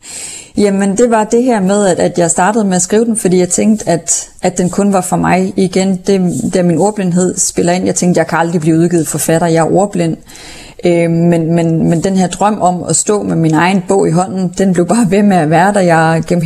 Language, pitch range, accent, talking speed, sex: Danish, 170-205 Hz, native, 245 wpm, female